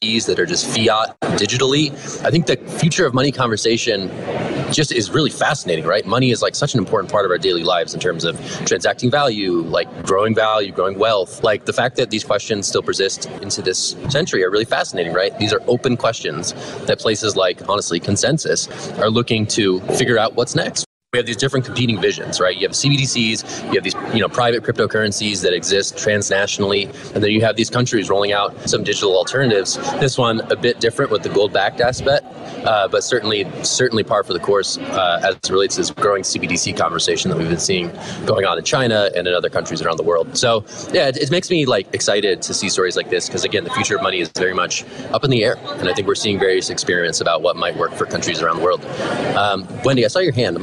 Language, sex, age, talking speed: English, male, 30-49, 225 wpm